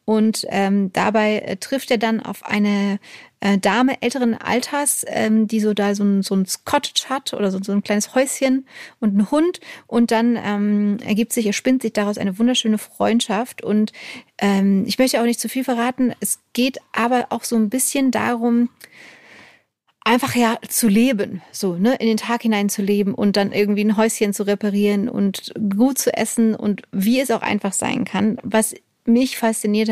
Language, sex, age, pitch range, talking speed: German, female, 30-49, 205-240 Hz, 185 wpm